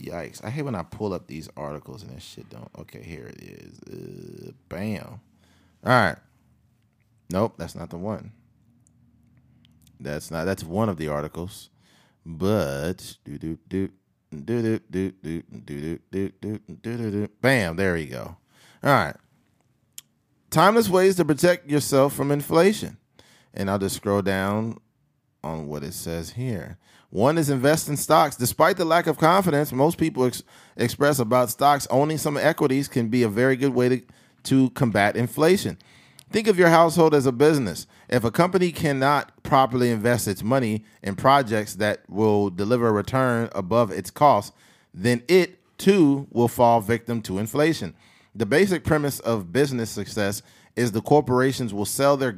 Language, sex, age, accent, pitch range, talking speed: English, male, 30-49, American, 100-145 Hz, 155 wpm